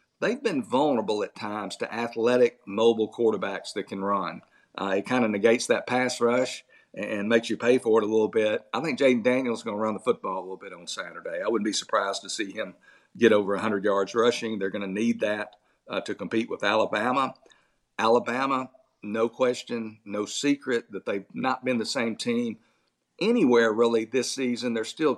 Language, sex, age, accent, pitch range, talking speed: English, male, 50-69, American, 105-125 Hz, 205 wpm